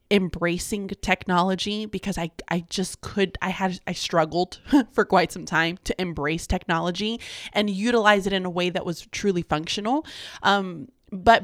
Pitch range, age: 185-230 Hz, 20-39